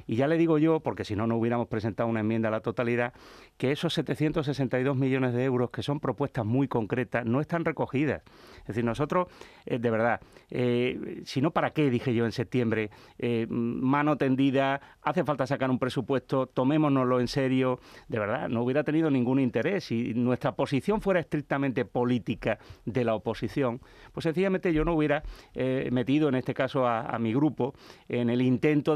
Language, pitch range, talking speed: Spanish, 120-145 Hz, 185 wpm